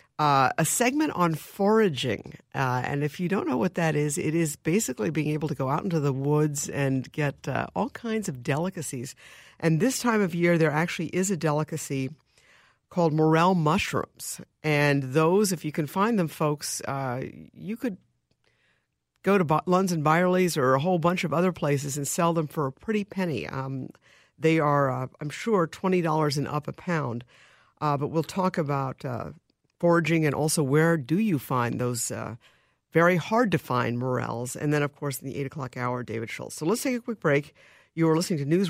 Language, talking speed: English, 200 wpm